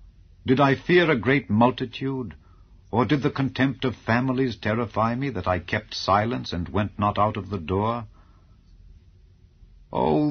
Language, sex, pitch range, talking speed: English, male, 90-120 Hz, 150 wpm